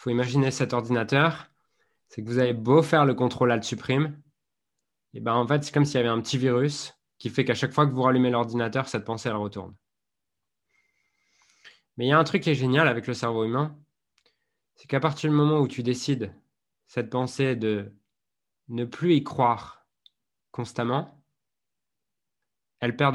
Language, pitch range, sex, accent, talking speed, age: French, 110-140 Hz, male, French, 180 wpm, 20-39